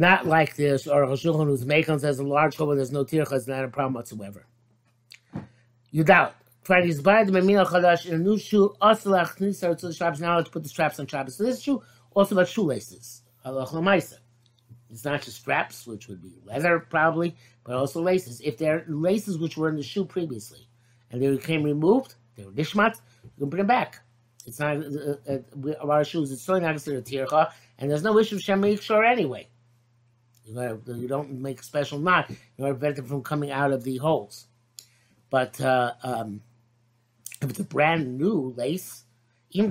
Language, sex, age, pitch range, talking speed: English, male, 60-79, 120-170 Hz, 180 wpm